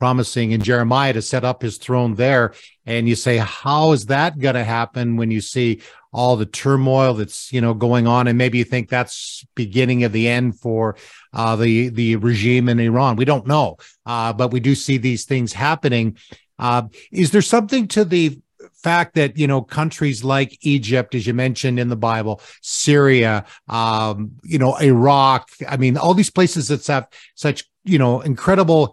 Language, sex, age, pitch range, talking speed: English, male, 50-69, 125-155 Hz, 190 wpm